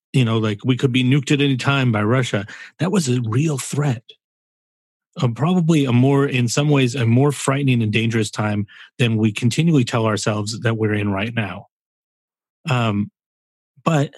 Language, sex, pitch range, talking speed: English, male, 110-135 Hz, 180 wpm